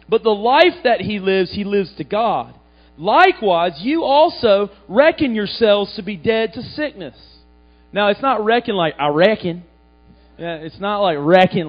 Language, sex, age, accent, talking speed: English, male, 40-59, American, 165 wpm